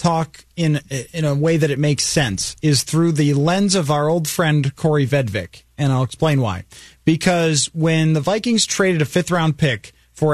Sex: male